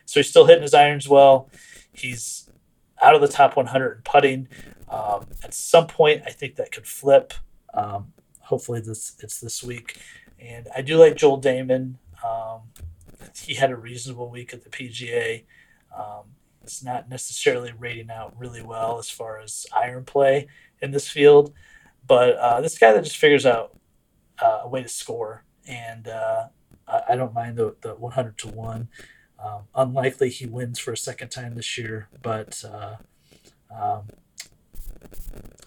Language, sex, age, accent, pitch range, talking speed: English, male, 30-49, American, 115-145 Hz, 160 wpm